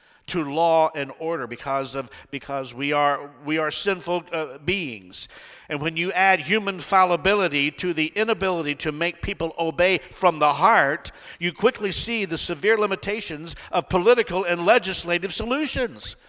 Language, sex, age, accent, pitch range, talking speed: English, male, 50-69, American, 125-190 Hz, 150 wpm